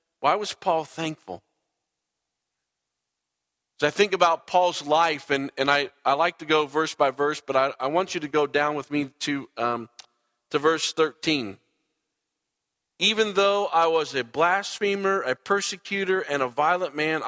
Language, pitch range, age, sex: English, 145-195 Hz, 40-59, male